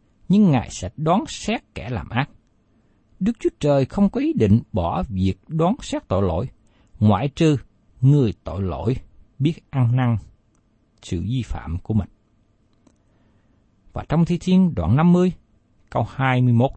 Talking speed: 150 wpm